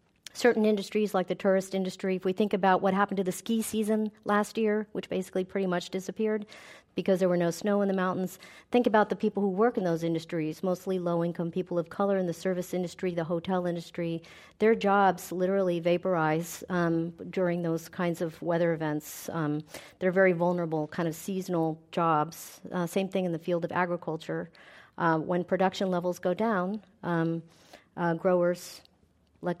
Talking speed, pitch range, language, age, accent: 180 wpm, 170-195 Hz, English, 50-69, American